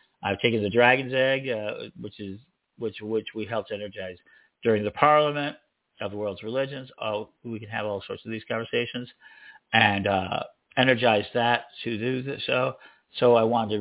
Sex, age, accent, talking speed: male, 50-69, American, 170 wpm